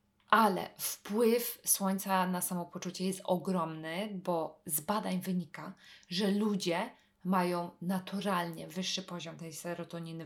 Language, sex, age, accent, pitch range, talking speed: English, female, 20-39, Polish, 175-200 Hz, 110 wpm